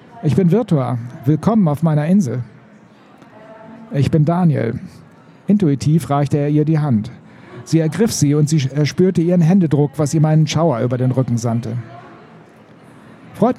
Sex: male